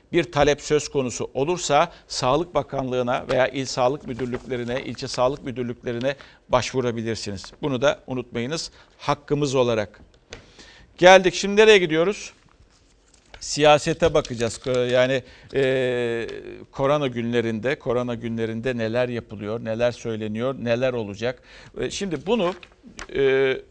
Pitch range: 115-160 Hz